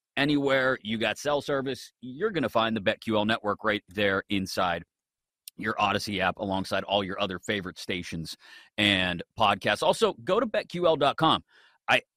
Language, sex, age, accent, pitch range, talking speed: English, male, 30-49, American, 105-160 Hz, 155 wpm